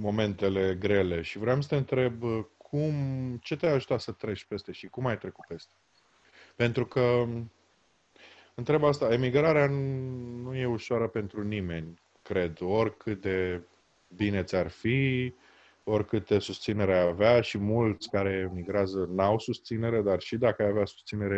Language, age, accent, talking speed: Romanian, 20-39, native, 145 wpm